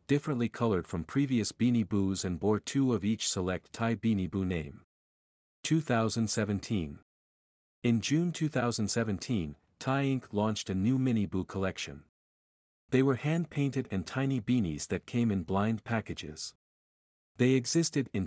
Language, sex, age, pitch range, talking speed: English, male, 50-69, 95-125 Hz, 140 wpm